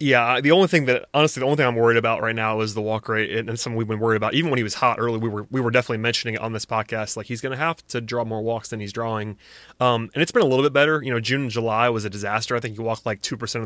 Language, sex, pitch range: English, male, 115-135 Hz